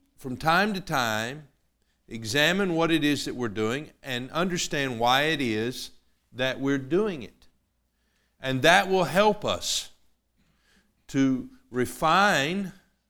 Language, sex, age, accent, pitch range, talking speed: English, male, 50-69, American, 110-160 Hz, 125 wpm